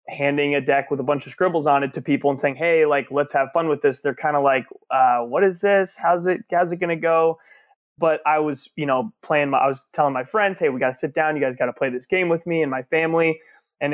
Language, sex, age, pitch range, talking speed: English, male, 20-39, 135-155 Hz, 295 wpm